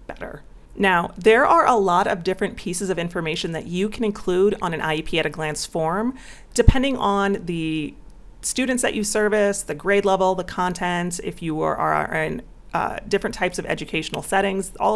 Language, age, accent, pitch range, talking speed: English, 30-49, American, 160-210 Hz, 175 wpm